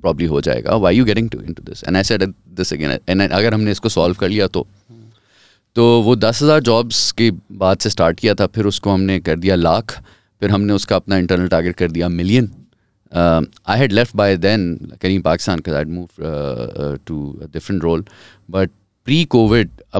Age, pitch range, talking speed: 30-49, 85-115 Hz, 170 wpm